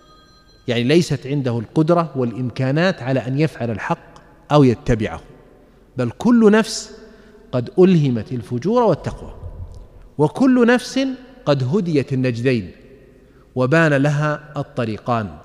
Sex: male